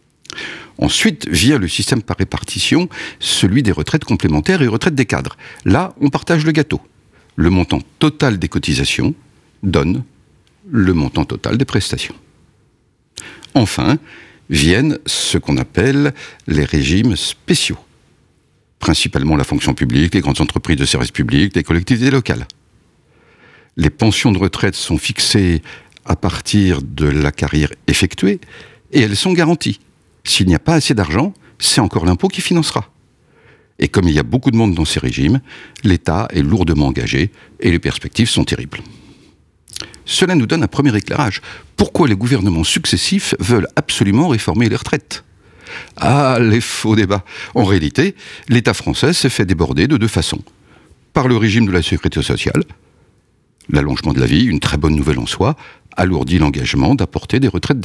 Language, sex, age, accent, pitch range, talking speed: French, male, 60-79, French, 85-135 Hz, 155 wpm